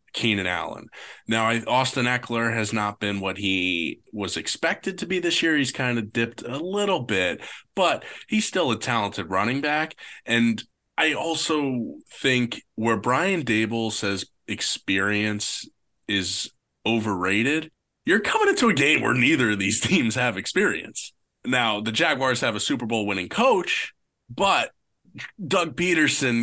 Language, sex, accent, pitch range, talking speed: English, male, American, 110-150 Hz, 150 wpm